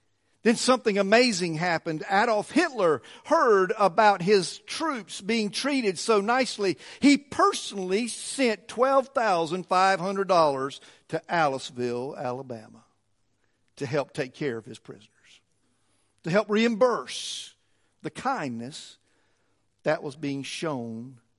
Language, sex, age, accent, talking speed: English, male, 50-69, American, 105 wpm